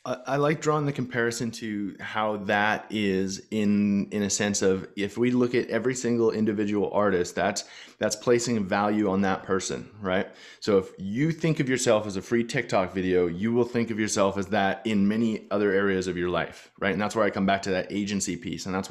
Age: 30-49